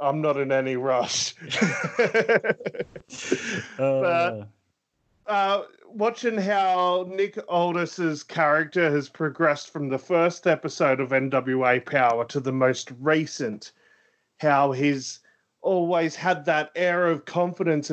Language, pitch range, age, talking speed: English, 125-160 Hz, 30-49, 105 wpm